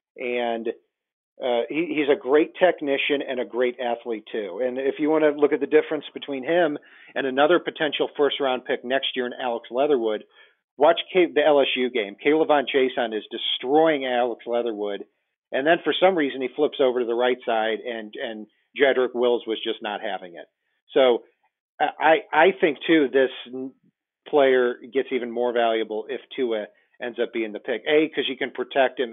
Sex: male